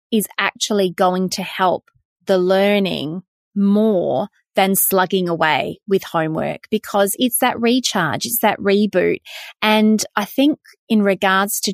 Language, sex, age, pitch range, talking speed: English, female, 30-49, 185-230 Hz, 135 wpm